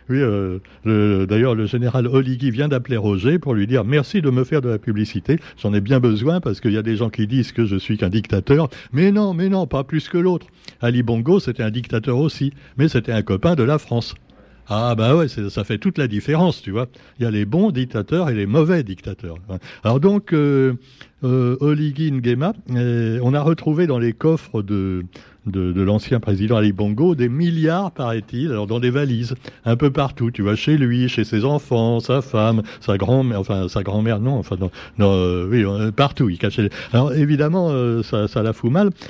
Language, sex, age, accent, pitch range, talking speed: French, male, 60-79, French, 105-145 Hz, 220 wpm